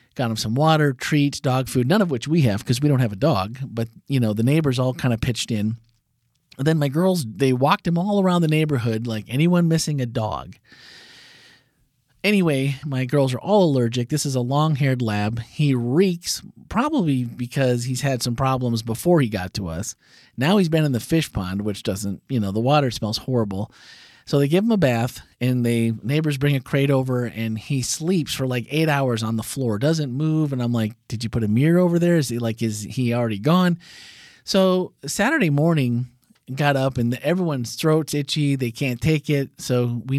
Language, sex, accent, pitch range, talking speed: English, male, American, 115-150 Hz, 210 wpm